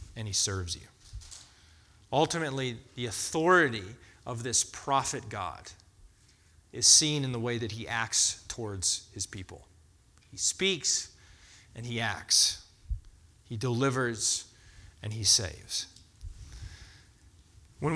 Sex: male